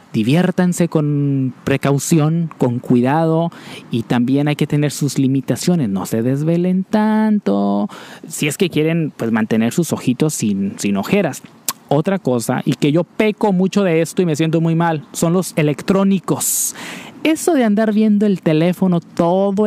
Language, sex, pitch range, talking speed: Spanish, male, 140-185 Hz, 155 wpm